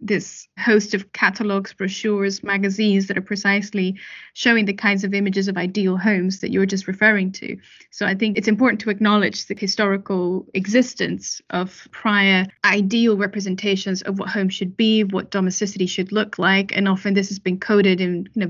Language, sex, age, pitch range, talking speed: English, female, 10-29, 195-220 Hz, 180 wpm